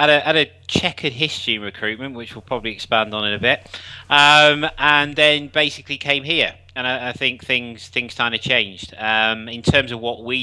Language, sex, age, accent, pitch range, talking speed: English, male, 30-49, British, 100-115 Hz, 205 wpm